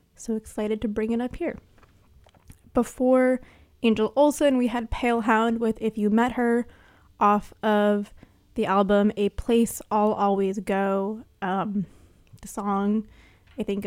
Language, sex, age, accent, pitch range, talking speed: English, female, 20-39, American, 190-230 Hz, 145 wpm